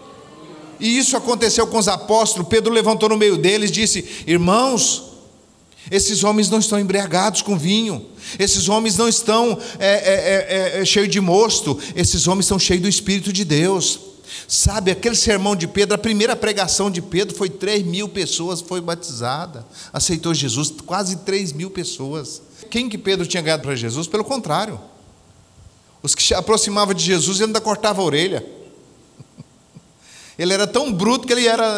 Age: 40-59